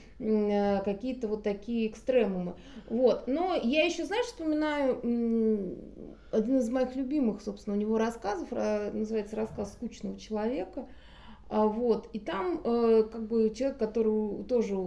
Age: 20-39